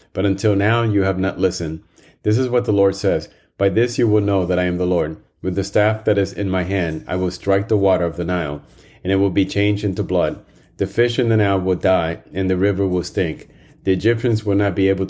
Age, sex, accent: 30-49, male, American